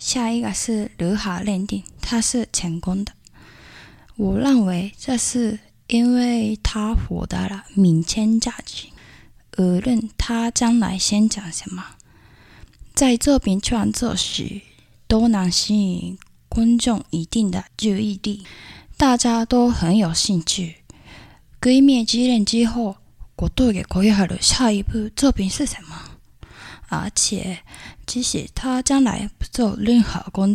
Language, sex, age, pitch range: Chinese, female, 10-29, 185-235 Hz